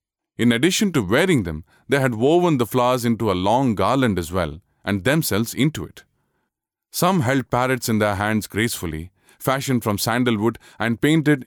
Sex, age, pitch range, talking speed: male, 30-49, 110-145 Hz, 165 wpm